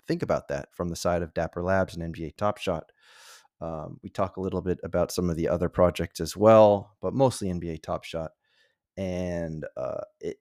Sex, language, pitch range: male, English, 90-115 Hz